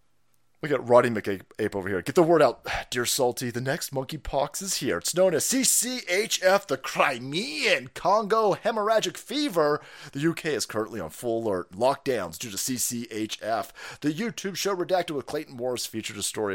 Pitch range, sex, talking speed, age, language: 125-205 Hz, male, 175 wpm, 30-49, English